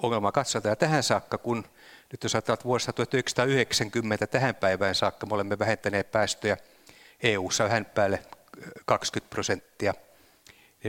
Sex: male